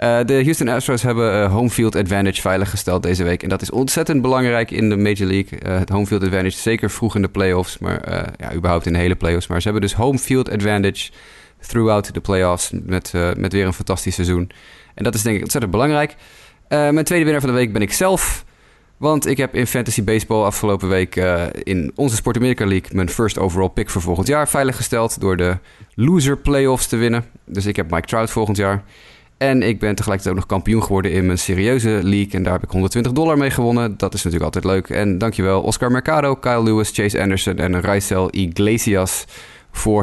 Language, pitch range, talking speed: Dutch, 95-115 Hz, 215 wpm